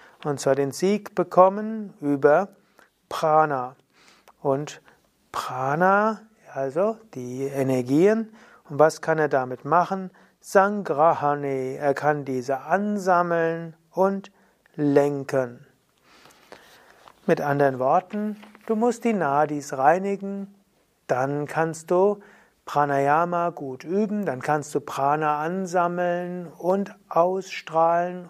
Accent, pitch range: German, 145-190 Hz